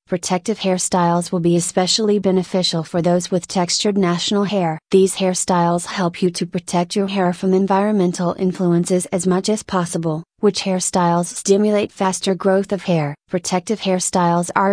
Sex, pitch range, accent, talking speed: female, 175-200 Hz, American, 150 wpm